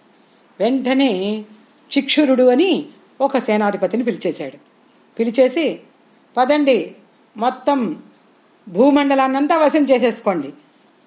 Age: 40-59